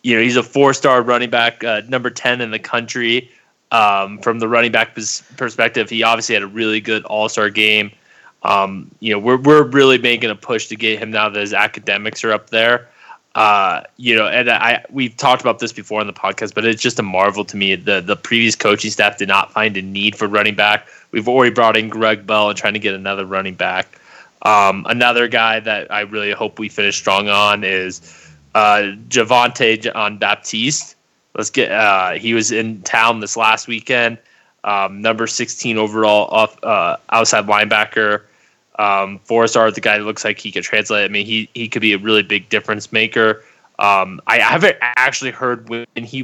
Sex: male